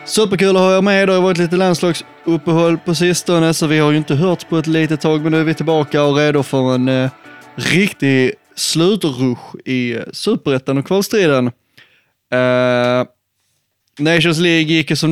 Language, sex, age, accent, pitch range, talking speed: Swedish, male, 20-39, native, 135-165 Hz, 165 wpm